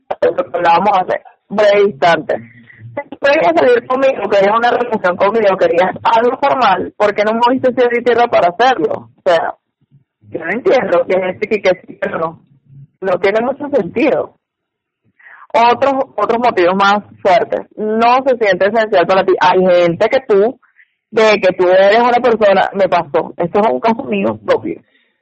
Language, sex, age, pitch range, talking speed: Spanish, female, 30-49, 185-245 Hz, 175 wpm